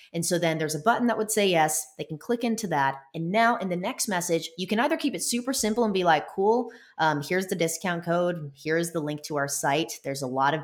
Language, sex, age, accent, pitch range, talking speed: English, female, 20-39, American, 140-195 Hz, 265 wpm